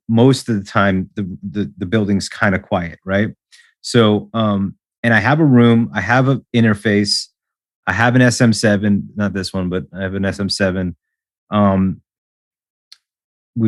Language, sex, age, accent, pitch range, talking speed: English, male, 30-49, American, 95-115 Hz, 160 wpm